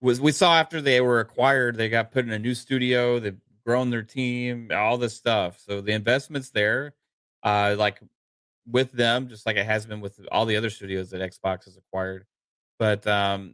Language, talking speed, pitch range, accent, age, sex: English, 195 wpm, 100-125 Hz, American, 30-49, male